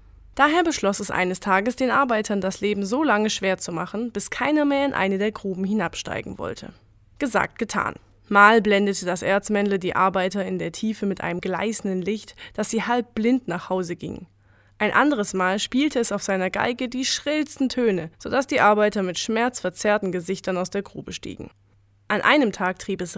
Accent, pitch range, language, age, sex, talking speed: German, 185-225 Hz, German, 10-29, female, 185 wpm